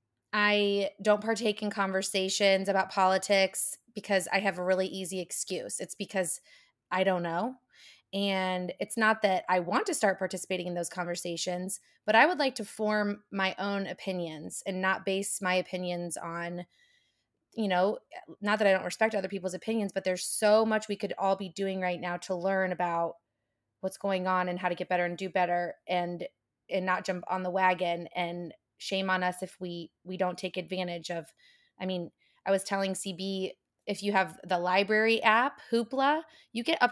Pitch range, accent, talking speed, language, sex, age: 180-215 Hz, American, 190 wpm, English, female, 20-39